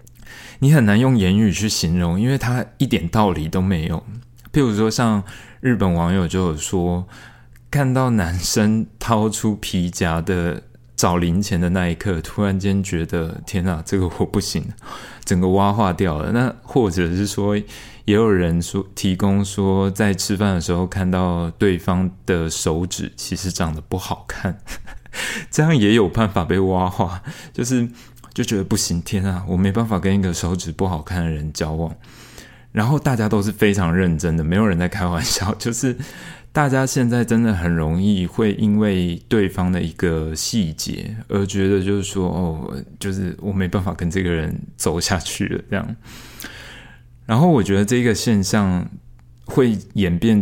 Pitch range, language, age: 90-110 Hz, Chinese, 20-39